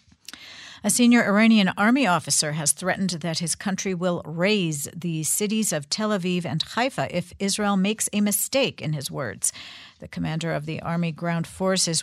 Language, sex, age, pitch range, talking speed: English, female, 50-69, 160-210 Hz, 170 wpm